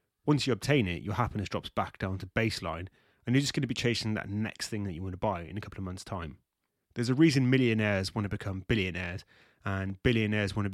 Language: English